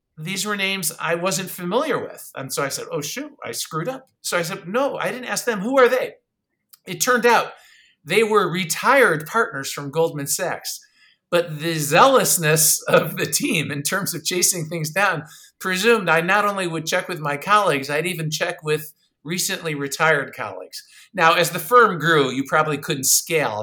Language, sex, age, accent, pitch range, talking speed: English, male, 50-69, American, 150-190 Hz, 190 wpm